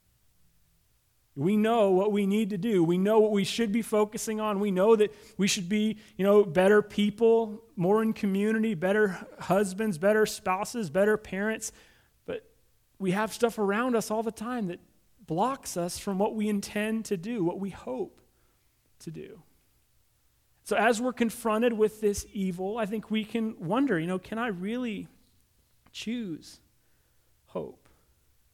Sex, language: male, English